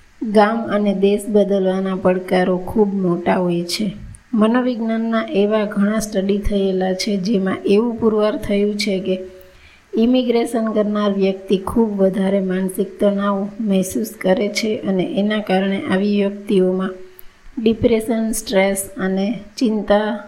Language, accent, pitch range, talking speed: Gujarati, native, 195-220 Hz, 90 wpm